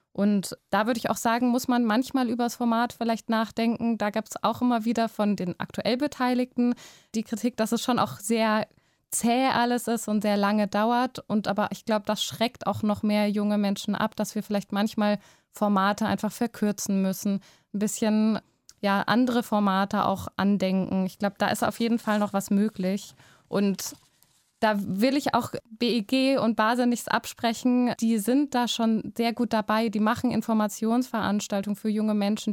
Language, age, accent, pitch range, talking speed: German, 20-39, German, 205-230 Hz, 180 wpm